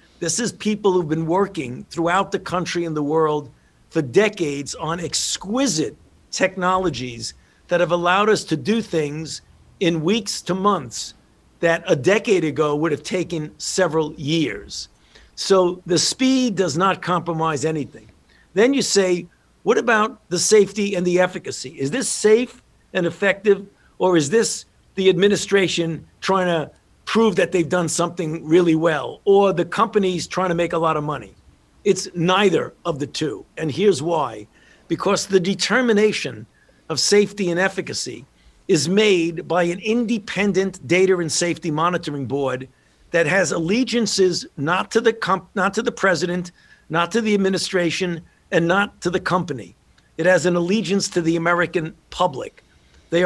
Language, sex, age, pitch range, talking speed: English, male, 50-69, 160-195 Hz, 150 wpm